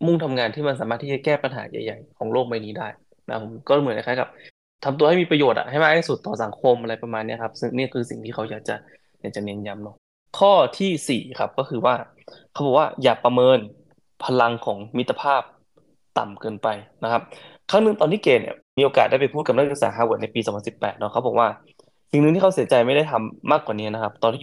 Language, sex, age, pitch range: Thai, male, 20-39, 110-150 Hz